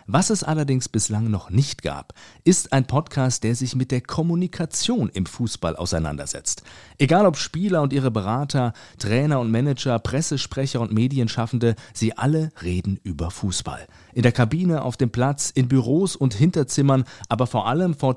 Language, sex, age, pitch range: German, male, 40-59, 110-145 Hz